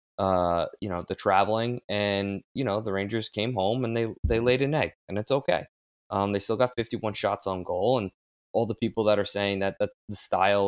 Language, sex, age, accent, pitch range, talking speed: English, male, 20-39, American, 95-110 Hz, 225 wpm